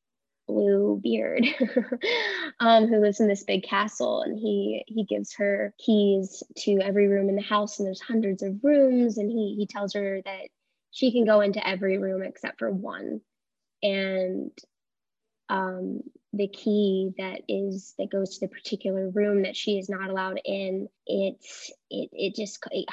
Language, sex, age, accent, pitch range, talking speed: English, female, 10-29, American, 190-215 Hz, 165 wpm